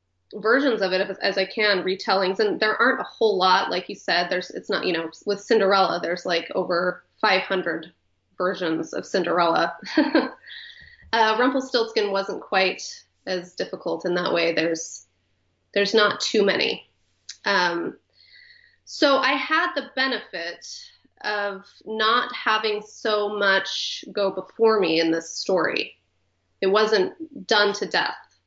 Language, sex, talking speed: English, female, 140 wpm